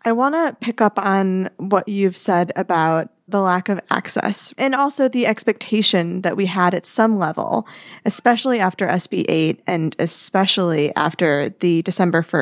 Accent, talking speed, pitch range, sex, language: American, 160 wpm, 175-215 Hz, female, English